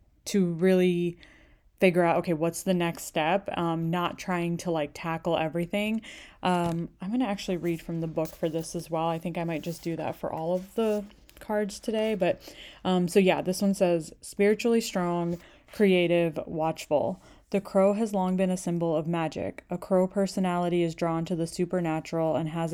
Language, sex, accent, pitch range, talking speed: English, female, American, 165-185 Hz, 190 wpm